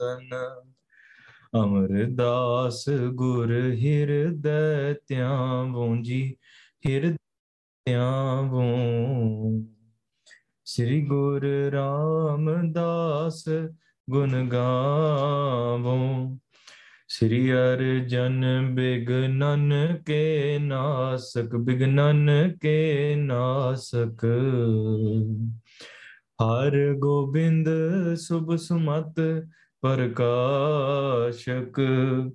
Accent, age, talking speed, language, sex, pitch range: Indian, 20-39, 50 wpm, English, male, 125-145 Hz